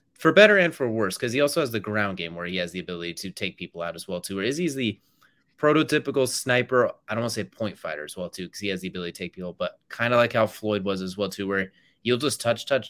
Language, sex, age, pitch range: English, male, 20-39, 100-130 Hz